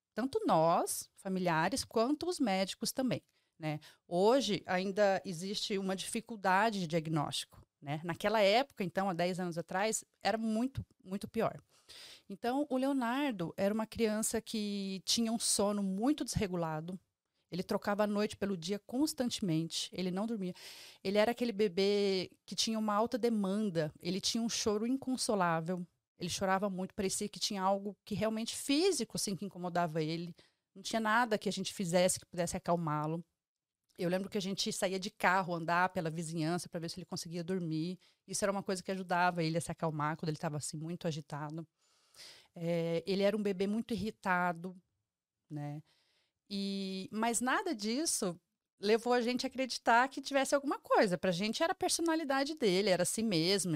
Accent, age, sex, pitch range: Brazilian, 30-49, female, 175-225 Hz